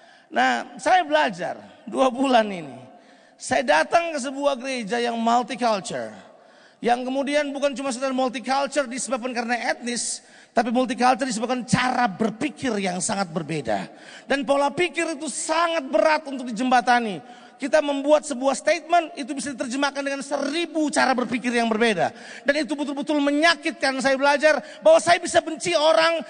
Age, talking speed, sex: 40-59, 140 wpm, male